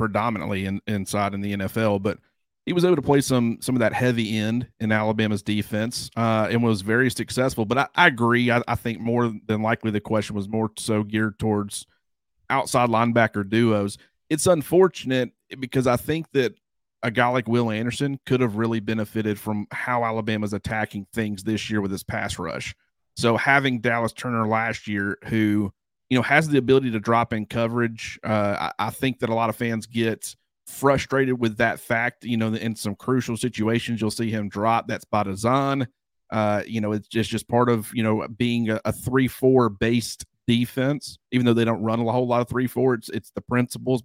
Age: 30-49